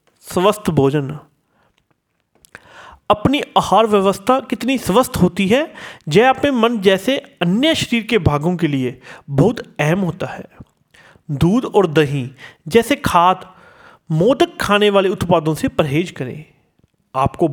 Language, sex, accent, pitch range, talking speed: Hindi, male, native, 160-250 Hz, 125 wpm